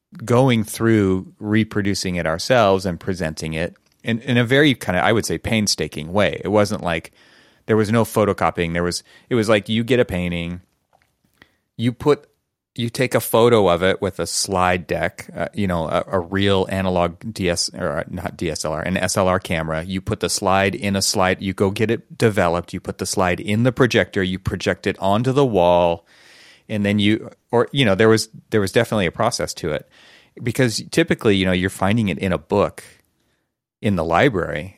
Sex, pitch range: male, 85-110 Hz